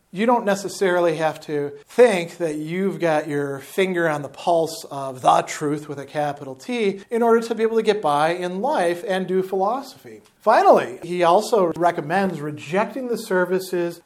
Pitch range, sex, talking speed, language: 150-185 Hz, male, 175 wpm, English